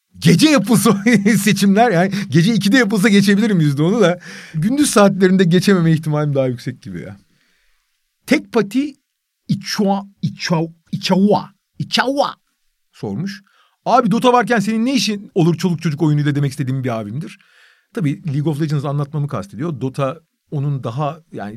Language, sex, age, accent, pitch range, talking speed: Turkish, male, 40-59, native, 135-195 Hz, 135 wpm